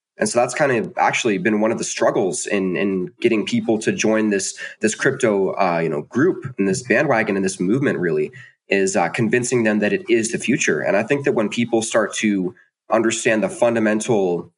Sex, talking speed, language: male, 210 wpm, English